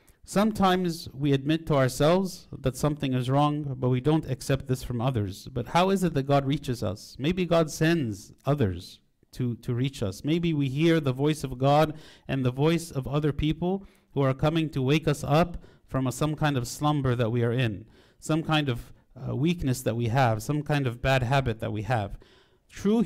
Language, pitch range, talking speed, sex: English, 120-150 Hz, 205 wpm, male